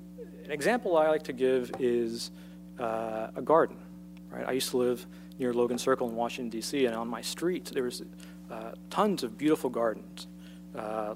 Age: 40-59